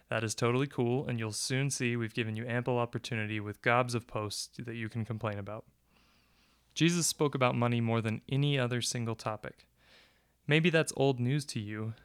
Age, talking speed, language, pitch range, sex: 20-39, 190 wpm, English, 115-140 Hz, male